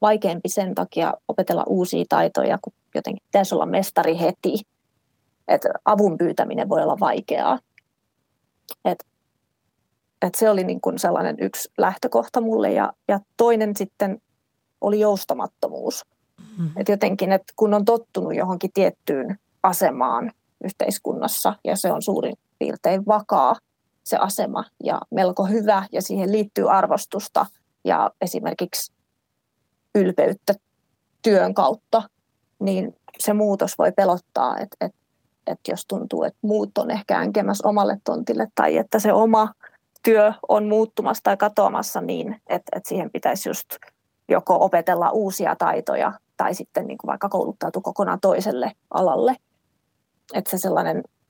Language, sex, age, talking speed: Finnish, female, 30-49, 130 wpm